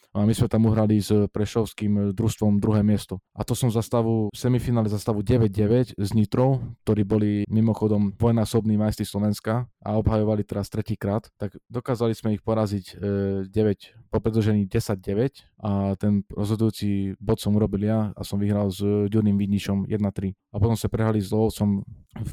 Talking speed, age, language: 165 wpm, 20-39, Czech